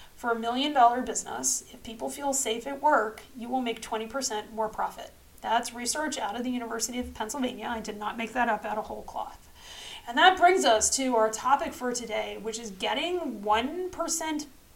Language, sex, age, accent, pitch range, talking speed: English, female, 30-49, American, 220-285 Hz, 195 wpm